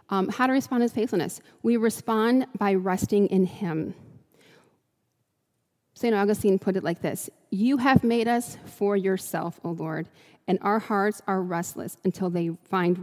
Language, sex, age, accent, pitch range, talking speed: English, female, 30-49, American, 185-220 Hz, 160 wpm